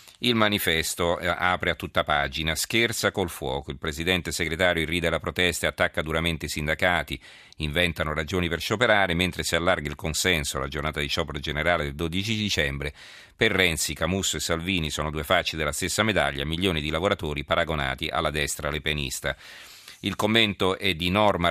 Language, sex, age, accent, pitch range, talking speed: Italian, male, 40-59, native, 75-95 Hz, 165 wpm